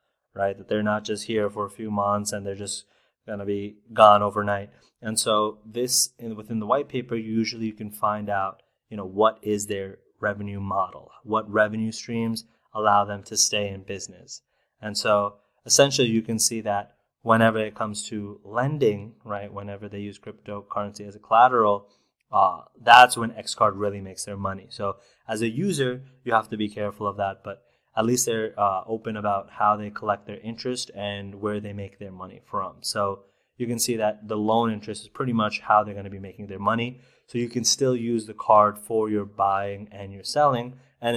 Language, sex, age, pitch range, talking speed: English, male, 20-39, 100-115 Hz, 200 wpm